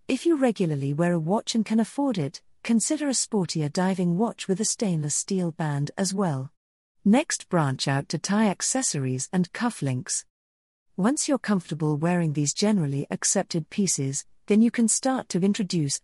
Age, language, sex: 50-69, English, female